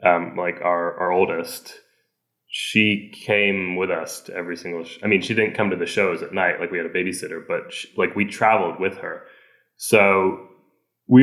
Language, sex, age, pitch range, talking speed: English, male, 20-39, 90-100 Hz, 185 wpm